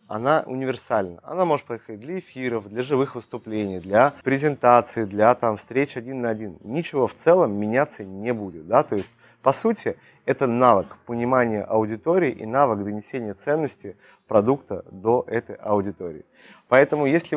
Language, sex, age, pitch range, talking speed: Russian, male, 30-49, 105-135 Hz, 140 wpm